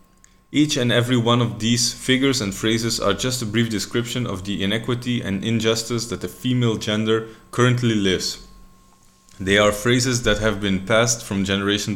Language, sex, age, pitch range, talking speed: Spanish, male, 30-49, 100-120 Hz, 170 wpm